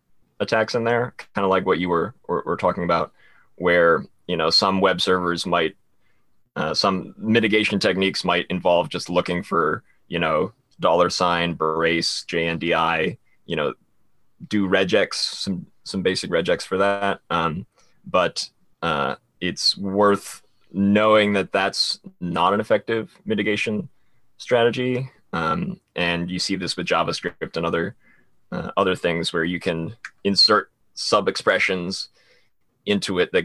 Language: English